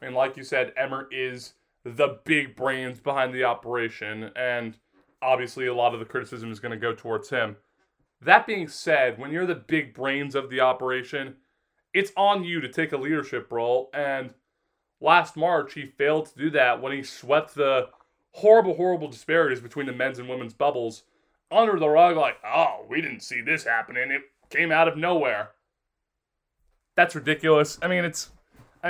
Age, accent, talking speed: 20-39, American, 180 wpm